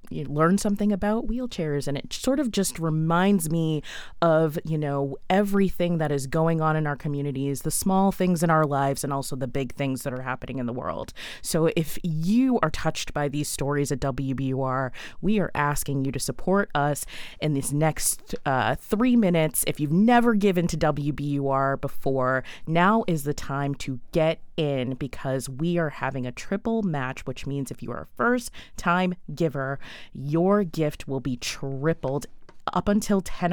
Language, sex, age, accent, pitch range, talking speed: English, female, 20-39, American, 135-180 Hz, 180 wpm